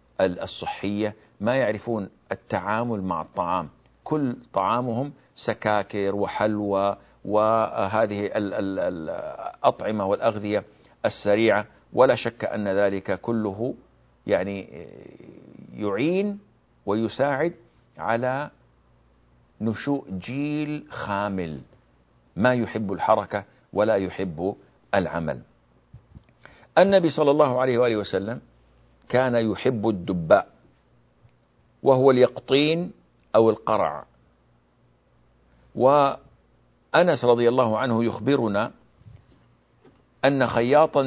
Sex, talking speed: male, 75 wpm